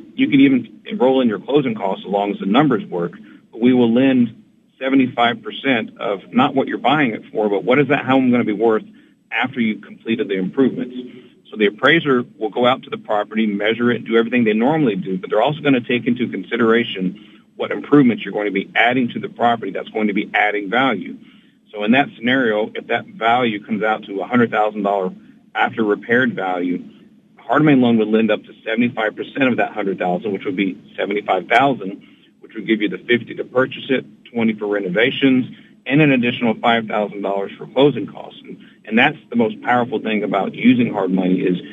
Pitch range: 105-130 Hz